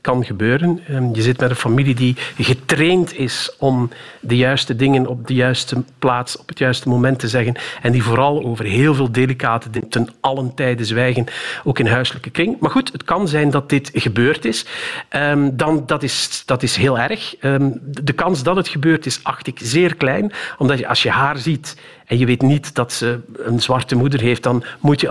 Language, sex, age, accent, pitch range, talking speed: Dutch, male, 50-69, Dutch, 125-155 Hz, 200 wpm